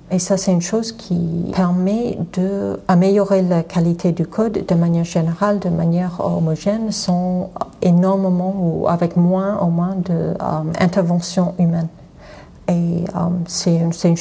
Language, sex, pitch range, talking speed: French, female, 170-190 Hz, 145 wpm